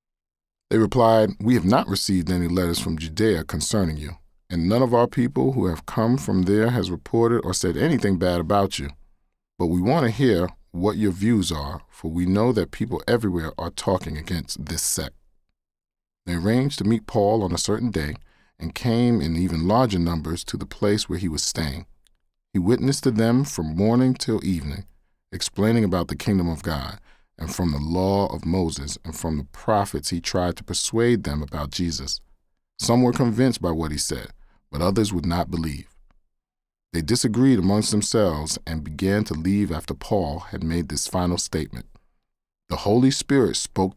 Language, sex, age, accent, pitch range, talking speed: English, male, 40-59, American, 80-105 Hz, 185 wpm